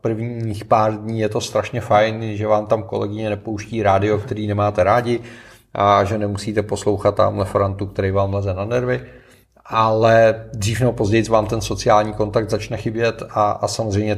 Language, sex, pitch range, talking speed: Czech, male, 105-120 Hz, 170 wpm